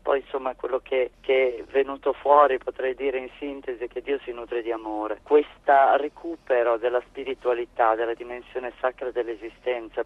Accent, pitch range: native, 120-150 Hz